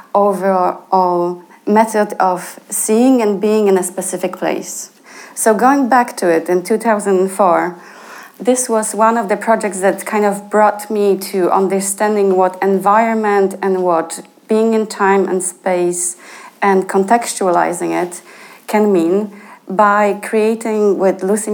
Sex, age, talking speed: female, 30-49, 135 wpm